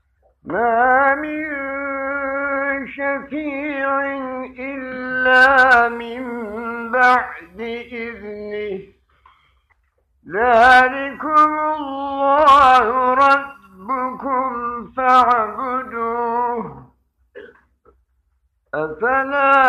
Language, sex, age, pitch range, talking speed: Turkish, male, 50-69, 235-280 Hz, 45 wpm